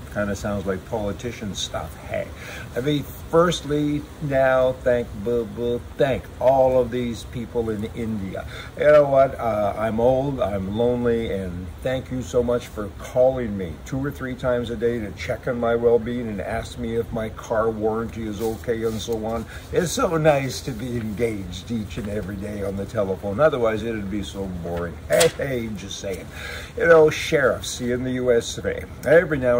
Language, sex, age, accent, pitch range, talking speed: English, male, 60-79, American, 110-140 Hz, 185 wpm